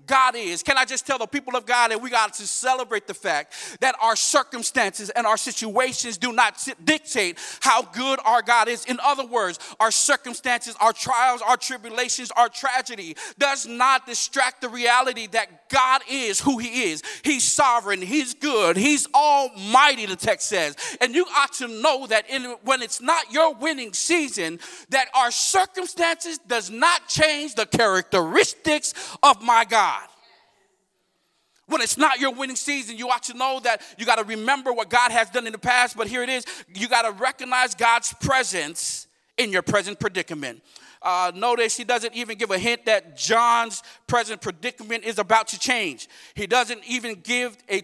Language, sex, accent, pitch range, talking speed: English, male, American, 225-270 Hz, 180 wpm